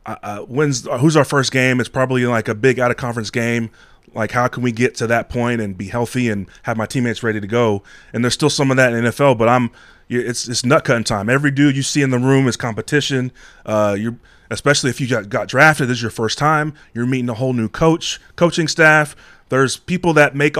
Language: English